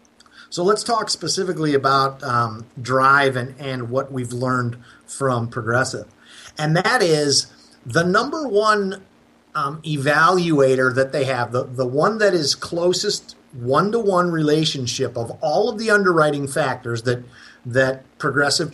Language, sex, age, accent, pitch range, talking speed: English, male, 50-69, American, 130-180 Hz, 135 wpm